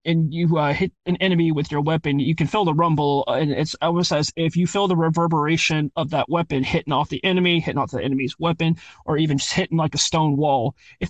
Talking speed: 240 wpm